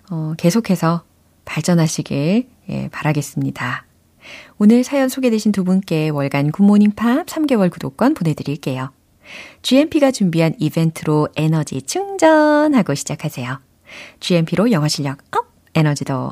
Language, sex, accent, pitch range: Korean, female, native, 155-255 Hz